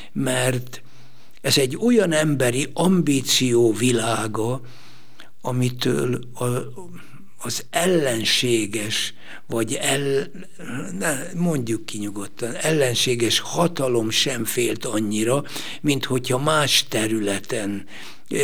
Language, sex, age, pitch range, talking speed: Hungarian, male, 60-79, 110-140 Hz, 80 wpm